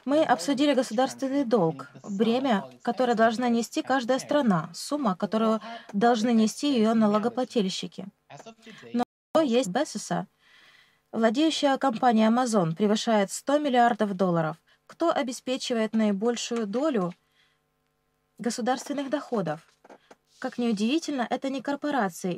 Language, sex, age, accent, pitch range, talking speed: Russian, female, 20-39, native, 210-260 Hz, 100 wpm